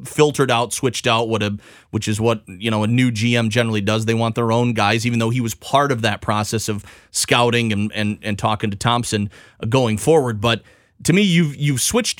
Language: English